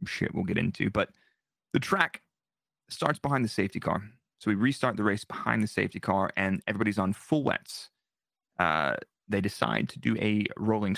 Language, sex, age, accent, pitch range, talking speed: English, male, 30-49, American, 105-140 Hz, 180 wpm